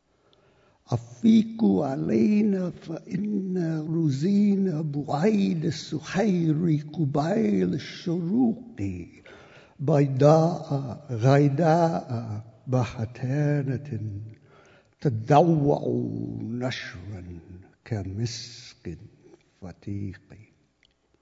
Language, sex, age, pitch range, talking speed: English, male, 60-79, 105-150 Hz, 50 wpm